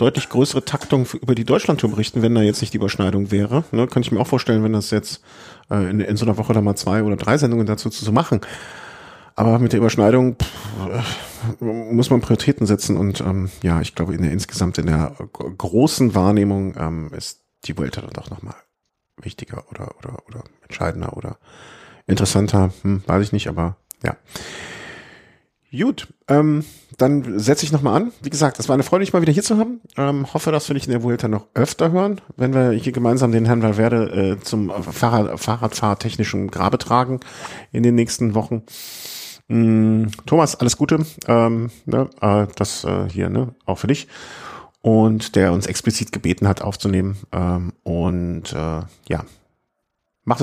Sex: male